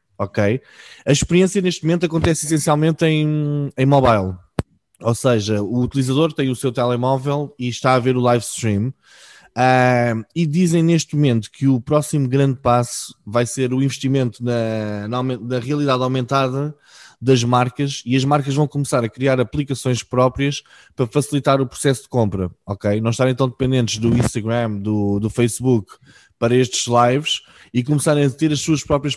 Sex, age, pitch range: male, 20-39, 120-145 Hz